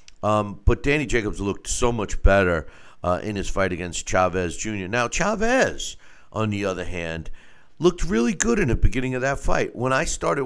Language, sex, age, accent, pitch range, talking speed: English, male, 50-69, American, 90-120 Hz, 190 wpm